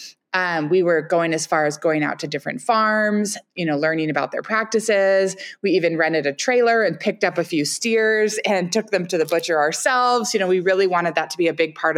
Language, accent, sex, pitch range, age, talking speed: English, American, female, 160-210 Hz, 20-39, 235 wpm